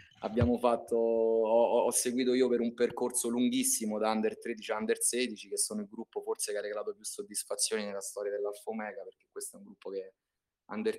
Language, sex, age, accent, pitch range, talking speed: Italian, male, 20-39, native, 100-140 Hz, 195 wpm